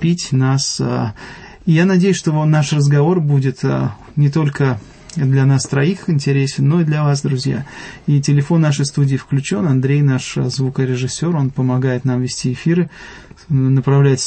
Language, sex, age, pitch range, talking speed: English, male, 30-49, 130-150 Hz, 135 wpm